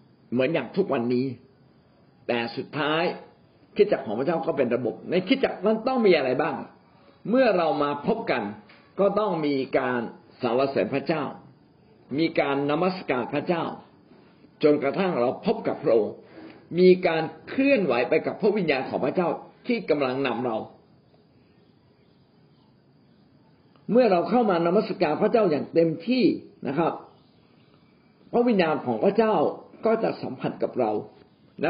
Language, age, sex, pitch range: Thai, 60-79, male, 140-205 Hz